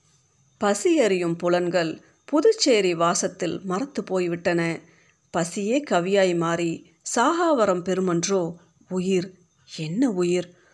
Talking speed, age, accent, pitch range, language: 85 wpm, 50-69, native, 170-235 Hz, Tamil